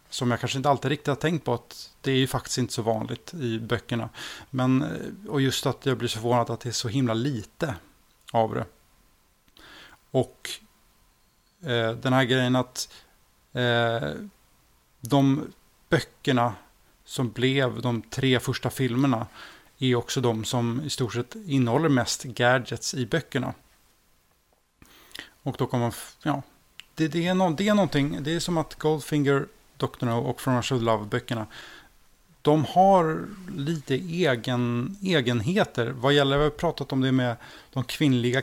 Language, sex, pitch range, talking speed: Swedish, male, 120-140 Hz, 155 wpm